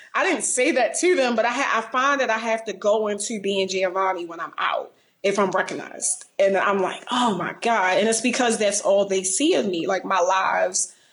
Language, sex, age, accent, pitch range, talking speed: English, female, 20-39, American, 190-235 Hz, 230 wpm